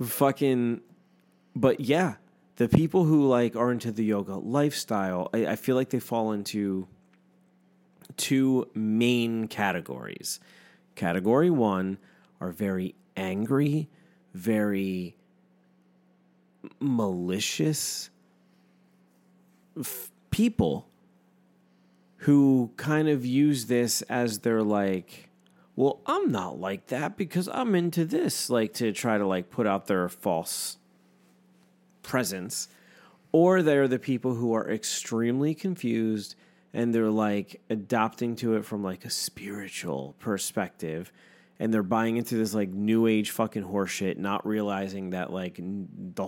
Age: 30-49